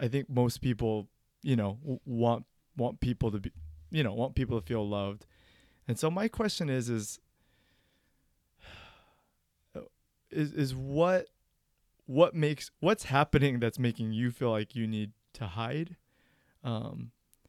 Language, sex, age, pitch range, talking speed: English, male, 20-39, 110-130 Hz, 140 wpm